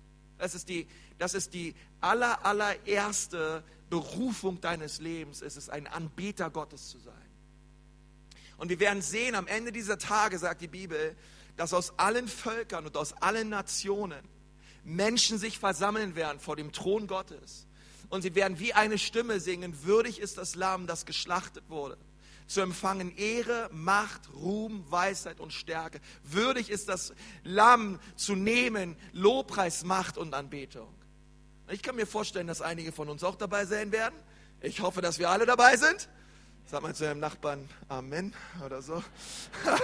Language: German